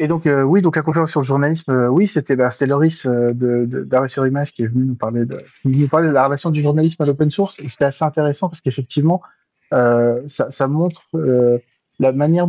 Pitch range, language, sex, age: 125-150 Hz, English, male, 30-49